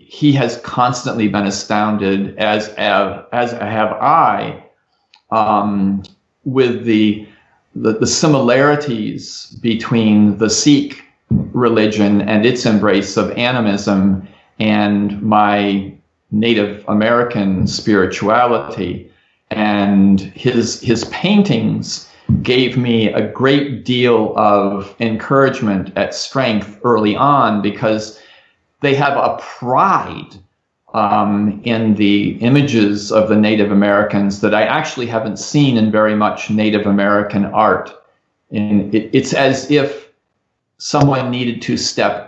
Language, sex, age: English, male, 40-59